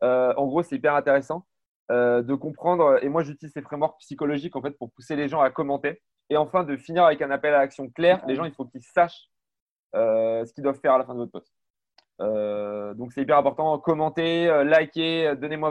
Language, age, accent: French, 20-39, French